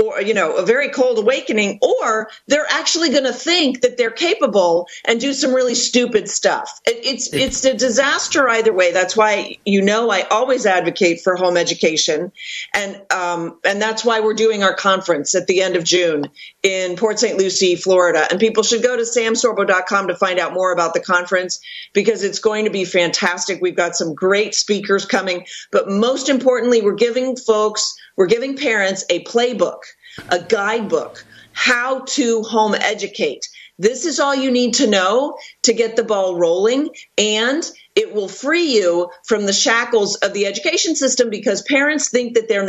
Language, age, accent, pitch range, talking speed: English, 40-59, American, 195-270 Hz, 180 wpm